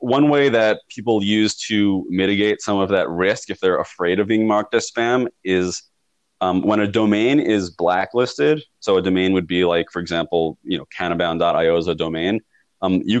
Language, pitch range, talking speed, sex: English, 85-110 Hz, 190 wpm, male